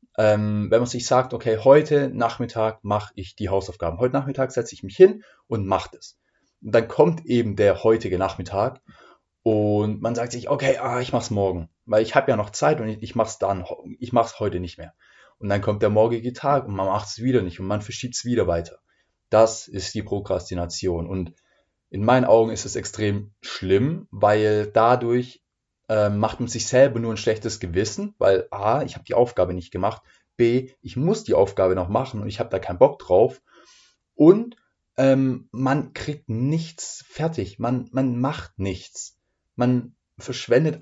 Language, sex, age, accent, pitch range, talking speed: German, male, 20-39, German, 100-130 Hz, 190 wpm